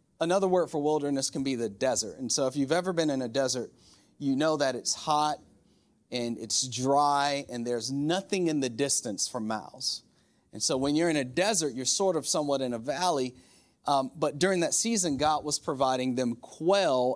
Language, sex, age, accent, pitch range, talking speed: English, male, 30-49, American, 130-160 Hz, 200 wpm